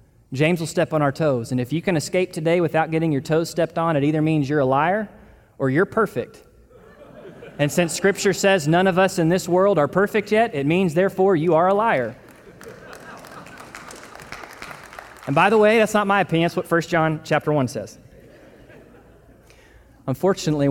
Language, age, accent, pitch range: English, 20-39, American, 145-210 Hz